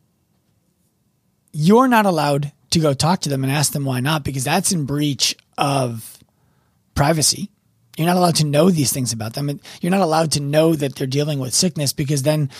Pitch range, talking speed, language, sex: 125-165 Hz, 190 wpm, English, male